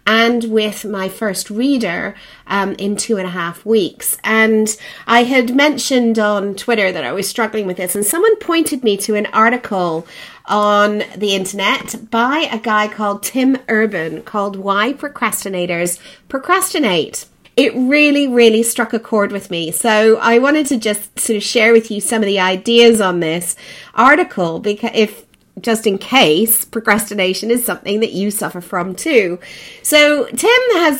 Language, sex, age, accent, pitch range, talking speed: English, female, 40-59, British, 200-245 Hz, 165 wpm